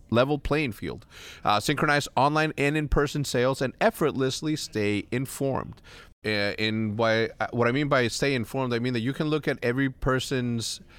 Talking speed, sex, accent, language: 175 wpm, male, American, English